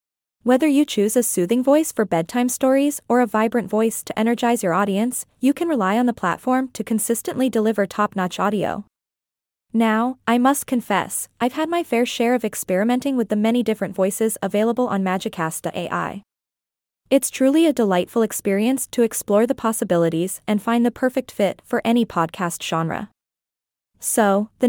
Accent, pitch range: American, 205-250 Hz